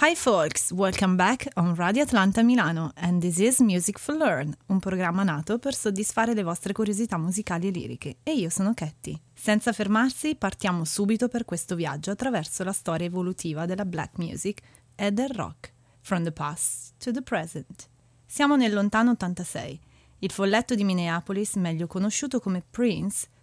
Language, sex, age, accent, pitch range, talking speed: Italian, female, 30-49, native, 160-220 Hz, 165 wpm